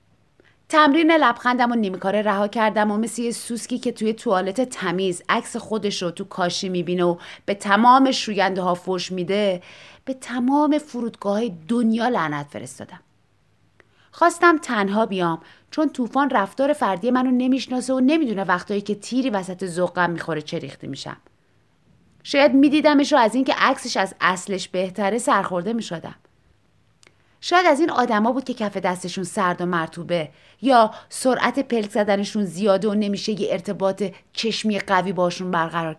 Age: 30-49